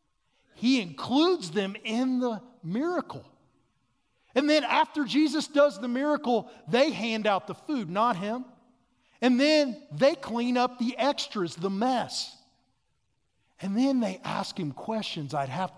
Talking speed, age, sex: 140 wpm, 50-69, male